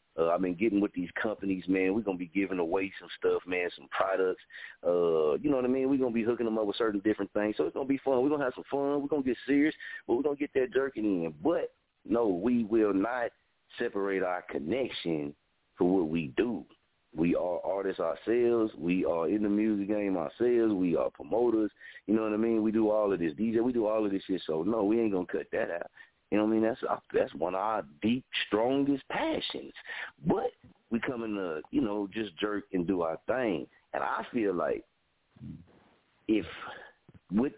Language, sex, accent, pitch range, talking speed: English, male, American, 95-130 Hz, 230 wpm